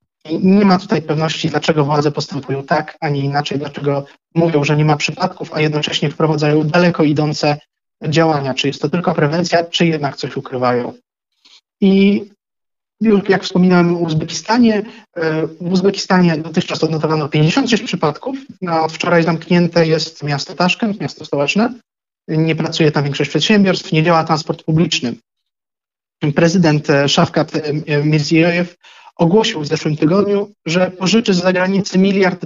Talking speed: 135 wpm